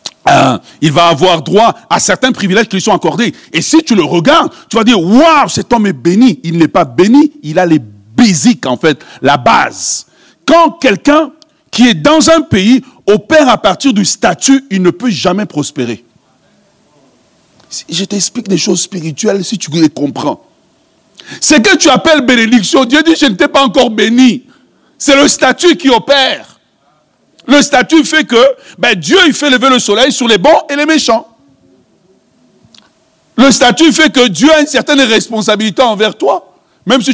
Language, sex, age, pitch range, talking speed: French, male, 60-79, 190-295 Hz, 180 wpm